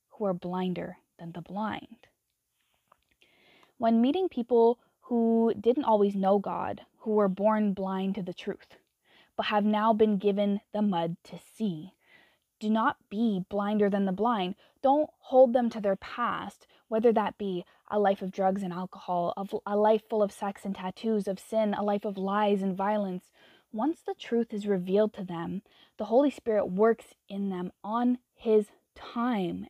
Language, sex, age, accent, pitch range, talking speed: English, female, 10-29, American, 195-235 Hz, 170 wpm